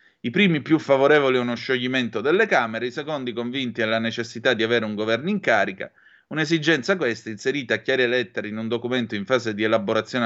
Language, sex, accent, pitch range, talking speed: Italian, male, native, 110-145 Hz, 195 wpm